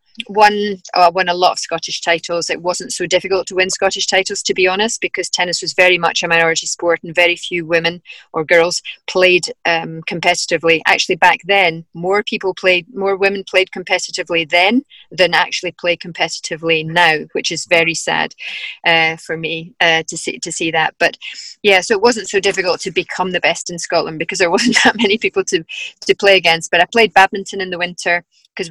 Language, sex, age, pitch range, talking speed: English, female, 30-49, 170-195 Hz, 205 wpm